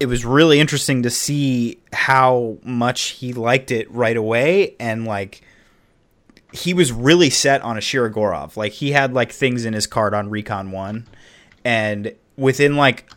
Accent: American